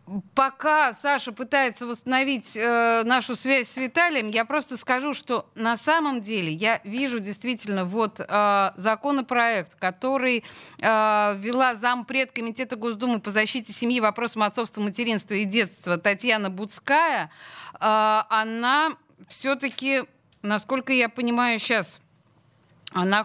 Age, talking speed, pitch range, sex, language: 30-49, 120 wpm, 185-245 Hz, female, Russian